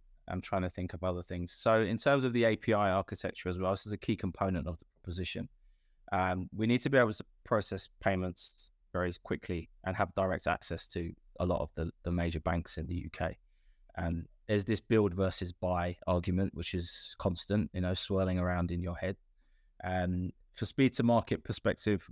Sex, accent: male, British